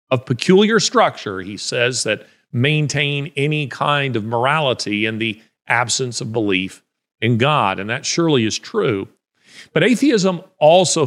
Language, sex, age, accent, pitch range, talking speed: English, male, 40-59, American, 115-160 Hz, 140 wpm